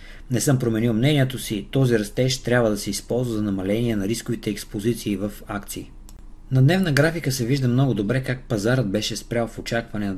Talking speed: 190 wpm